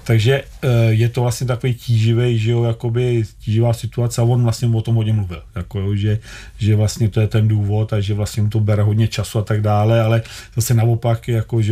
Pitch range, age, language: 105-120 Hz, 40-59, Czech